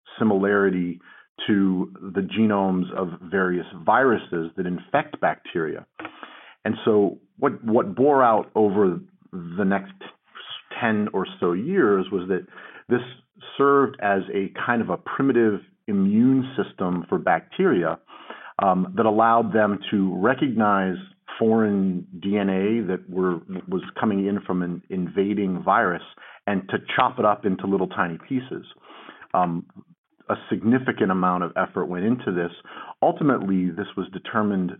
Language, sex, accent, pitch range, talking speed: English, male, American, 90-110 Hz, 130 wpm